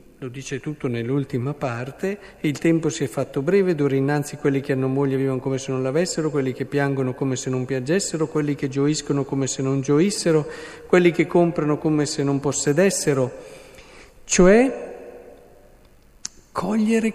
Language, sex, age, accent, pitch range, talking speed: Italian, male, 50-69, native, 135-190 Hz, 160 wpm